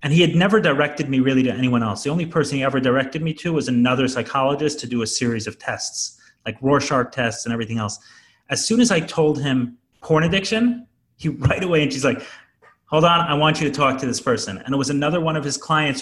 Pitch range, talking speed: 120-150 Hz, 245 wpm